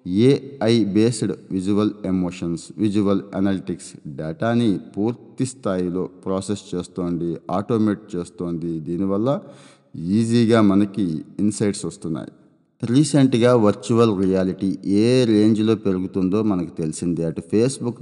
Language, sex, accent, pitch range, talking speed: Telugu, male, native, 95-110 Hz, 95 wpm